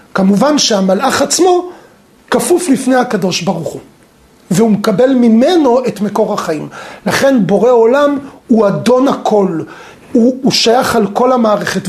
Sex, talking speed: male, 130 wpm